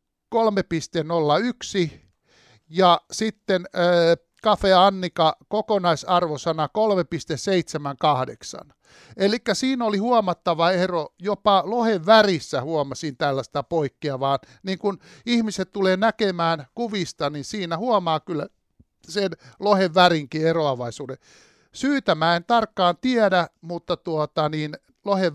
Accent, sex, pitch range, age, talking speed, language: native, male, 155-205 Hz, 60-79, 90 wpm, Finnish